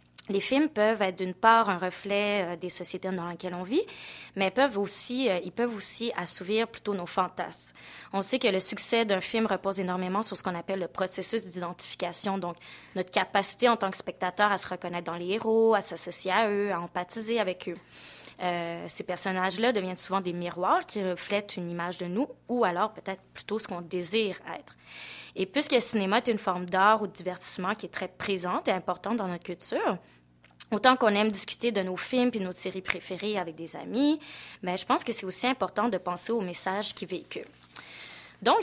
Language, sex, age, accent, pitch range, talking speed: French, female, 20-39, Canadian, 180-220 Hz, 205 wpm